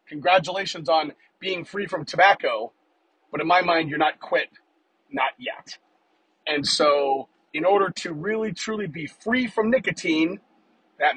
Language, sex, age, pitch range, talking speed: English, male, 30-49, 155-205 Hz, 145 wpm